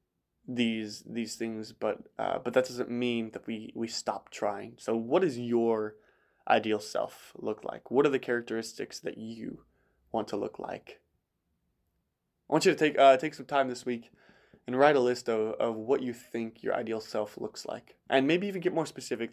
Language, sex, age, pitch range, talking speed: English, male, 20-39, 110-125 Hz, 195 wpm